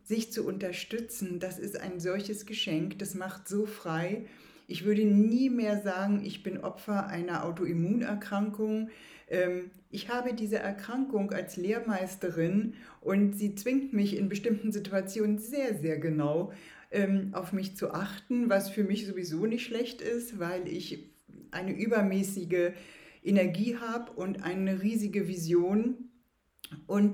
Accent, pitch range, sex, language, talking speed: German, 175-215 Hz, female, German, 135 wpm